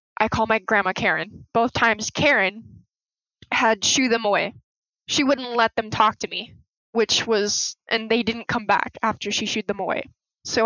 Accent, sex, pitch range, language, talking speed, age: American, female, 200-225 Hz, English, 180 wpm, 20-39